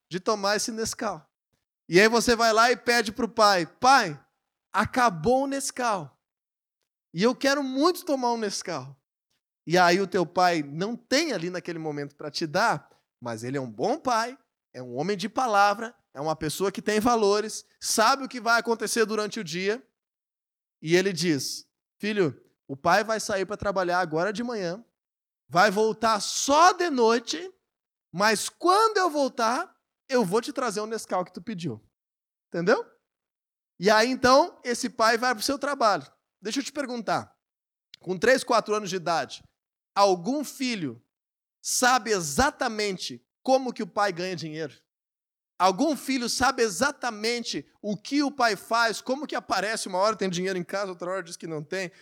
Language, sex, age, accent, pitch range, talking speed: Portuguese, male, 20-39, Brazilian, 185-255 Hz, 170 wpm